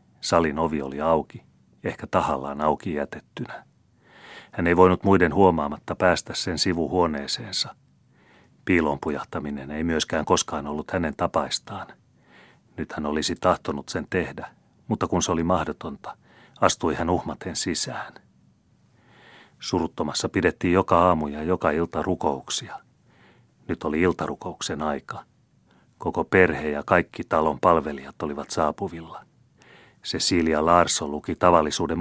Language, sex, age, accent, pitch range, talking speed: Finnish, male, 40-59, native, 75-100 Hz, 120 wpm